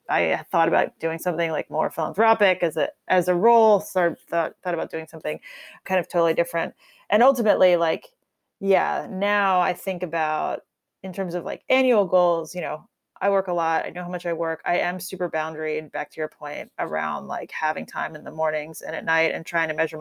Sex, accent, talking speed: female, American, 220 wpm